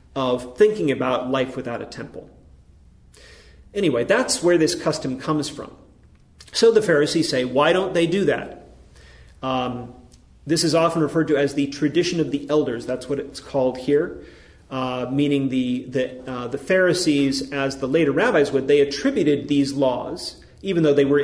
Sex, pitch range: male, 130-155 Hz